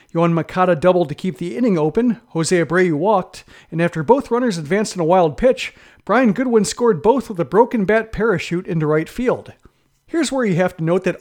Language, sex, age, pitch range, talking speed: English, male, 40-59, 170-220 Hz, 210 wpm